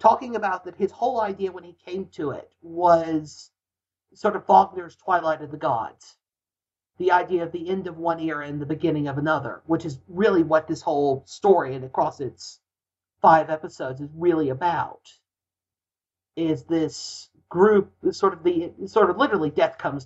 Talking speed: 175 wpm